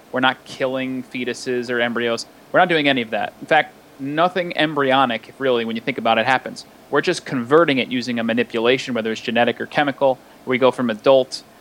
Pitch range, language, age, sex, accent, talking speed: 120-150 Hz, English, 30-49, male, American, 205 wpm